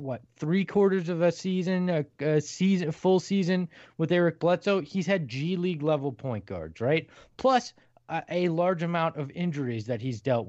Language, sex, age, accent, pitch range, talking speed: English, male, 30-49, American, 145-195 Hz, 185 wpm